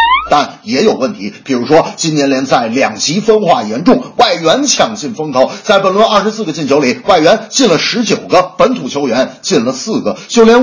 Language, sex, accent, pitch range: Chinese, male, native, 215-265 Hz